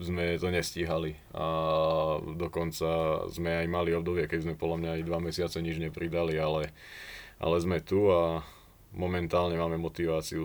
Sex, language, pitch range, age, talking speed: male, Slovak, 80-90 Hz, 20-39, 150 wpm